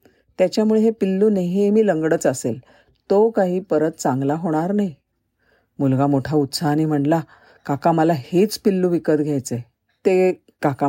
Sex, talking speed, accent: female, 130 wpm, native